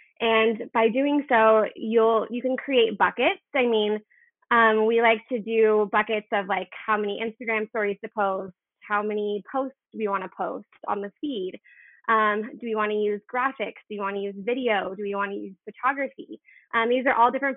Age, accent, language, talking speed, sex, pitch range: 20-39, American, English, 200 wpm, female, 205-235 Hz